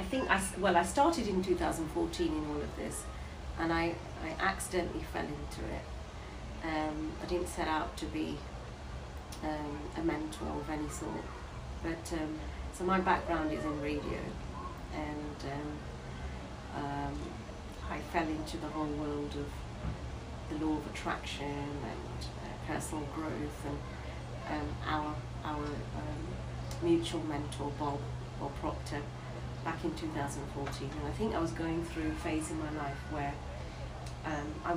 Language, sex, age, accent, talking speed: English, female, 40-59, British, 150 wpm